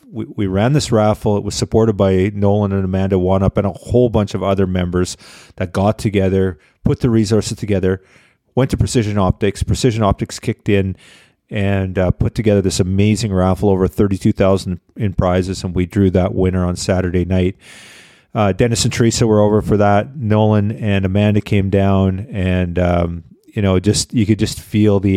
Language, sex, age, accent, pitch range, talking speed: English, male, 40-59, American, 95-110 Hz, 180 wpm